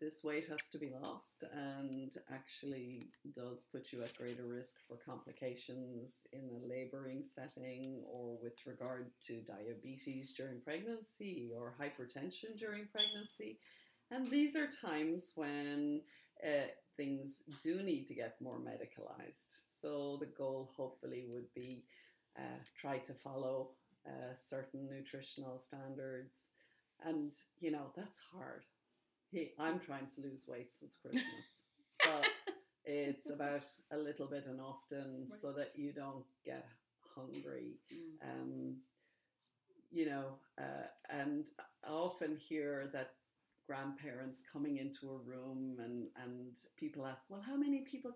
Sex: female